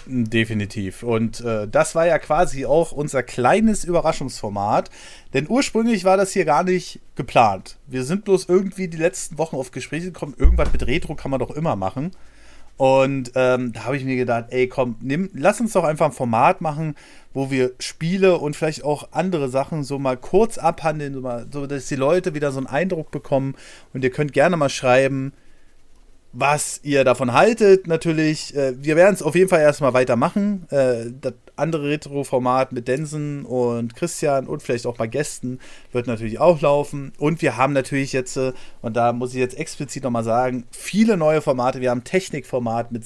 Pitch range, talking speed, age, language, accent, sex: 125-160 Hz, 180 wpm, 40-59, German, German, male